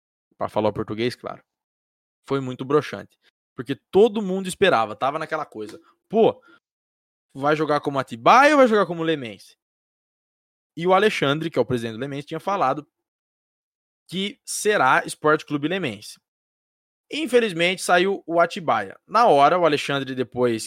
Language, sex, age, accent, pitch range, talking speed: Portuguese, male, 20-39, Brazilian, 115-160 Hz, 145 wpm